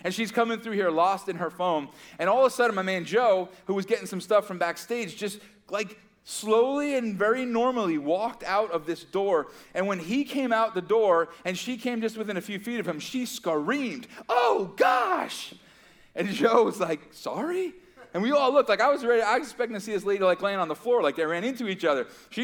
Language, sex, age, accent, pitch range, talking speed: English, male, 30-49, American, 180-235 Hz, 235 wpm